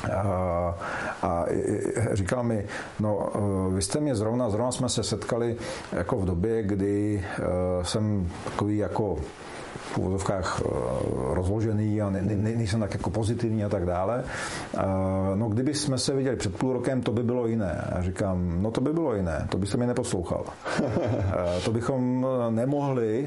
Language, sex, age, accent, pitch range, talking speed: Czech, male, 40-59, native, 100-120 Hz, 140 wpm